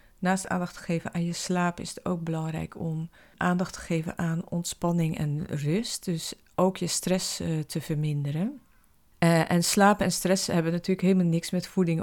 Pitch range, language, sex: 160-190 Hz, Dutch, female